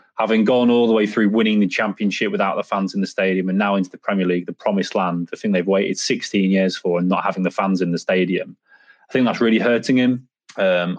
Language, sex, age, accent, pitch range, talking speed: English, male, 20-39, British, 95-110 Hz, 250 wpm